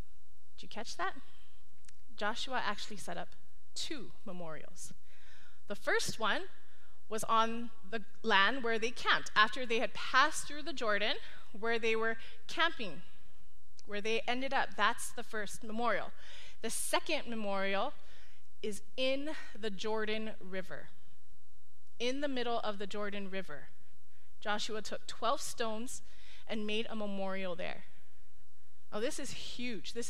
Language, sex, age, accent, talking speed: English, female, 20-39, American, 135 wpm